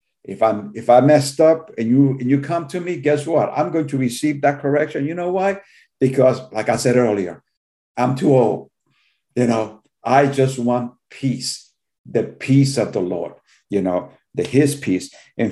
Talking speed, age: 190 wpm, 50-69